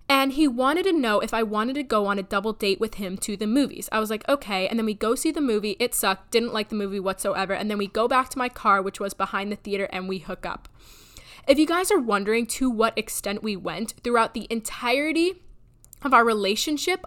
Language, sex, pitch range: English, female, 200-250 Hz